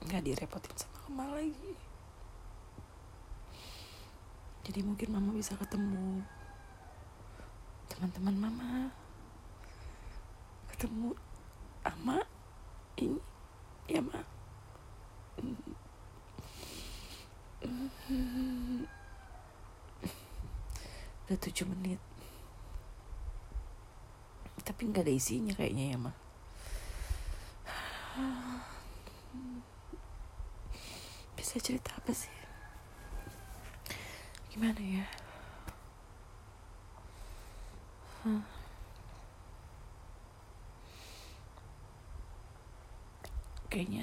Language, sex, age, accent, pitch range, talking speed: Indonesian, female, 30-49, native, 90-115 Hz, 50 wpm